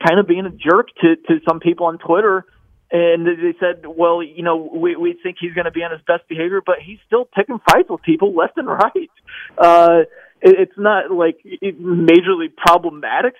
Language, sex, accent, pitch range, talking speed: English, male, American, 170-245 Hz, 195 wpm